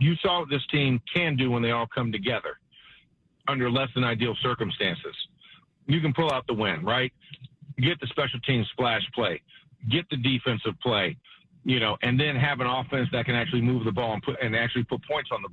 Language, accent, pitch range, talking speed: English, American, 120-145 Hz, 210 wpm